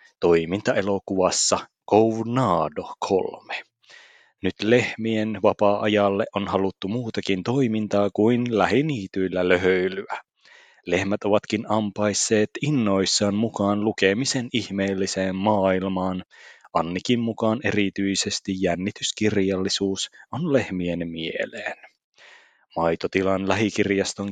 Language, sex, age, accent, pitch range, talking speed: Finnish, male, 30-49, native, 95-115 Hz, 75 wpm